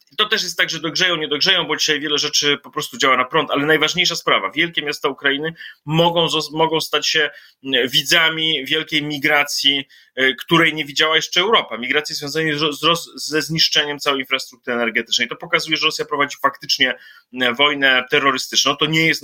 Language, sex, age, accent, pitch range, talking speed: Polish, male, 30-49, native, 140-165 Hz, 175 wpm